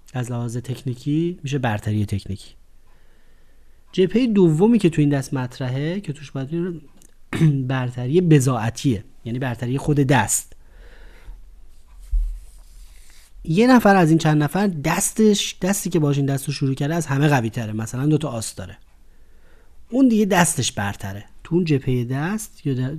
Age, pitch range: 30-49, 120-165 Hz